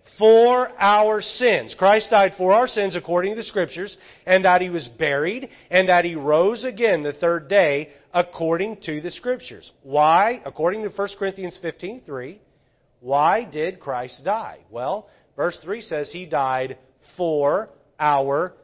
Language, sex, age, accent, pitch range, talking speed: English, male, 40-59, American, 130-180 Hz, 155 wpm